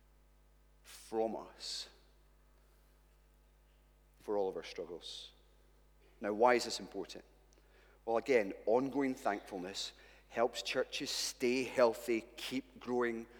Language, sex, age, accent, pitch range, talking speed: English, male, 30-49, British, 115-185 Hz, 100 wpm